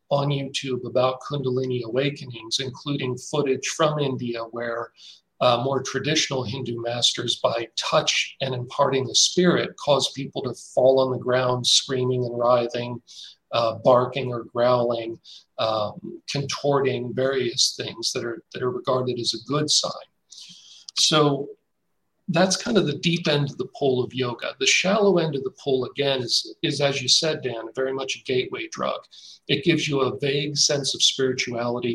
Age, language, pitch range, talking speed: 40-59, English, 125-150 Hz, 160 wpm